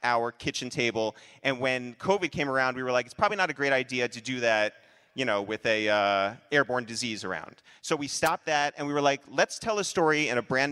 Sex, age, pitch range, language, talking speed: male, 30-49, 110-140 Hz, English, 240 wpm